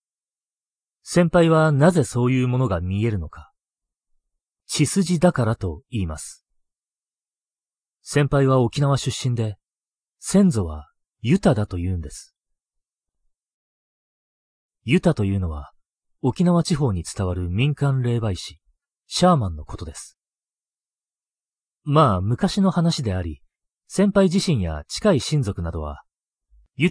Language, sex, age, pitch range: Japanese, male, 40-59, 85-145 Hz